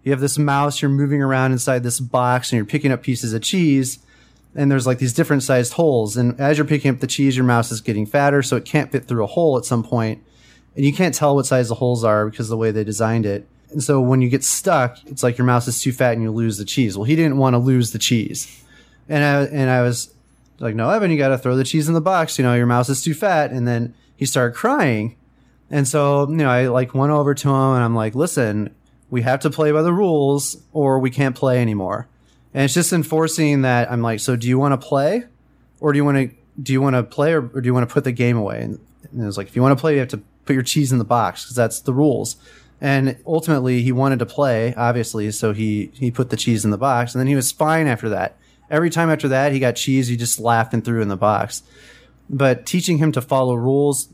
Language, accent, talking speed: English, American, 270 wpm